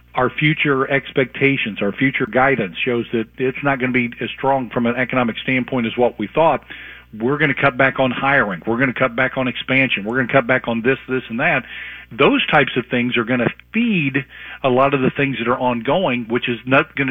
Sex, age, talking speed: male, 50-69, 235 wpm